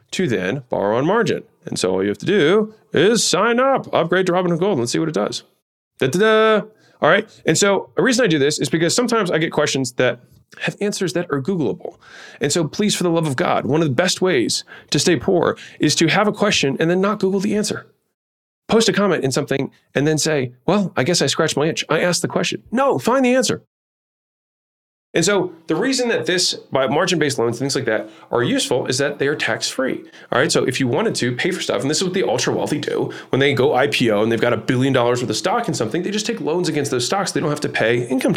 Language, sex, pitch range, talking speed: English, male, 140-205 Hz, 260 wpm